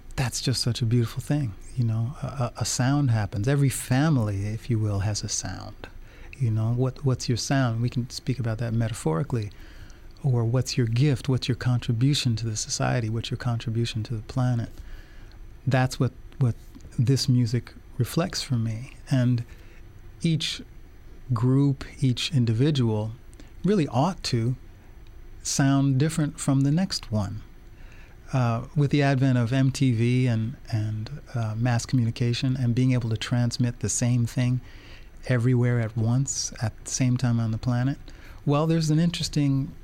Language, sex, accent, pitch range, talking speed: English, male, American, 110-130 Hz, 155 wpm